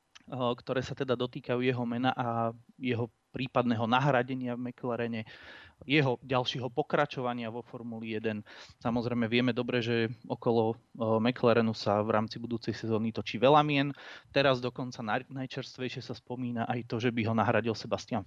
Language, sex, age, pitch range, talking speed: Czech, male, 20-39, 115-140 Hz, 145 wpm